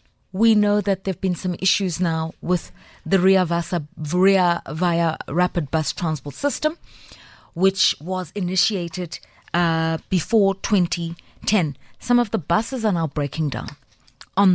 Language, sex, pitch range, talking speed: English, female, 160-190 Hz, 140 wpm